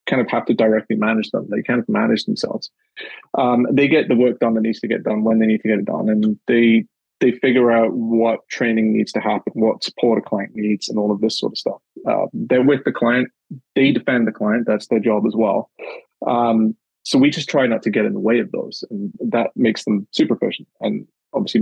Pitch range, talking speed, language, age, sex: 115-145 Hz, 240 wpm, English, 20-39, male